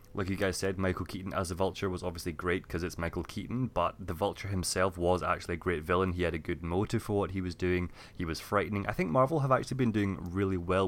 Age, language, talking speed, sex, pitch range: 20-39, English, 260 wpm, male, 90-110 Hz